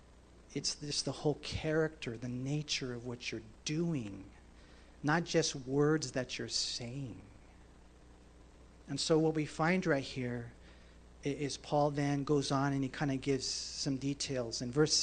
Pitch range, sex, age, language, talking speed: 135-190 Hz, male, 40-59, English, 150 wpm